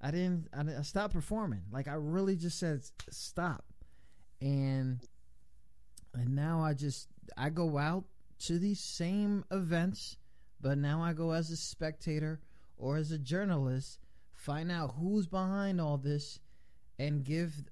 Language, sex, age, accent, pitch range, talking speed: English, male, 20-39, American, 130-175 Hz, 140 wpm